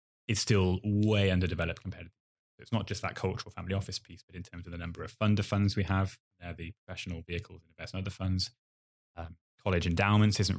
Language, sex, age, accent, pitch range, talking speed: English, male, 10-29, British, 85-105 Hz, 225 wpm